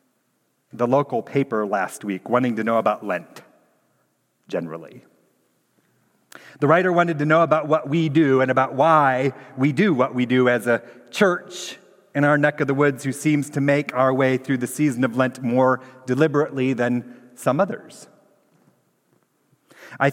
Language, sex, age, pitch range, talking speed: English, male, 40-59, 125-155 Hz, 160 wpm